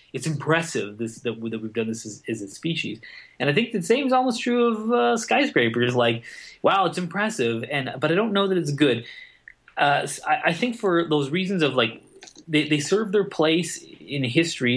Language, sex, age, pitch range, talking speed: English, male, 20-39, 120-160 Hz, 205 wpm